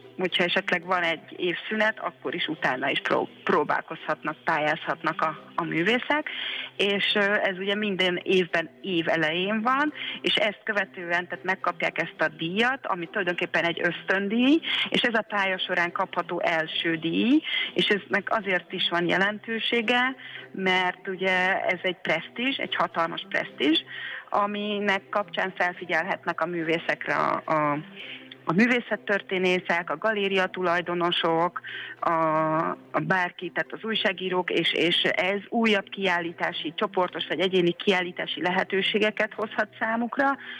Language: Hungarian